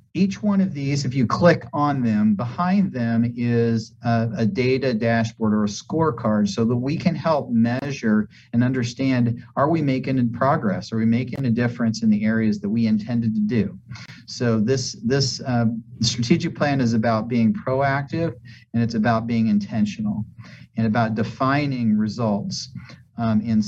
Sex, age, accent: male, 40-59, American